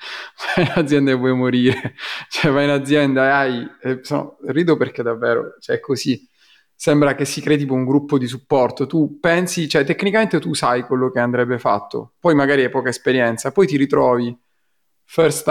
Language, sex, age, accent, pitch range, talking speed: Italian, male, 30-49, native, 125-145 Hz, 195 wpm